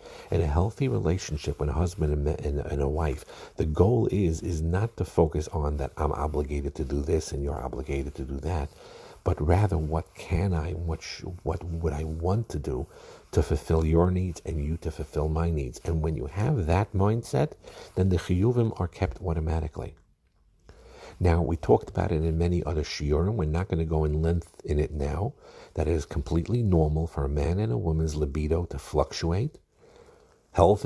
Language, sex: English, male